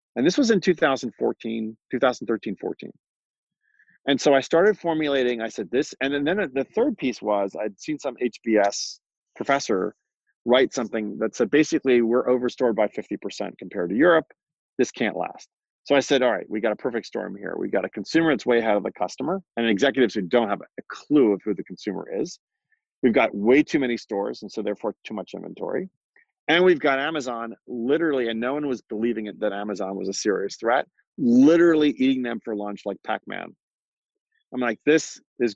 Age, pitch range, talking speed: 40-59, 105-145 Hz, 190 wpm